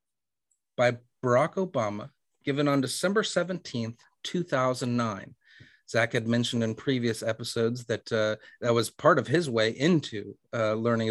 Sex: male